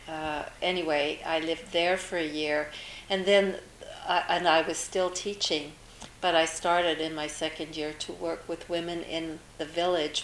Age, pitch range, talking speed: 50-69, 150-165 Hz, 175 wpm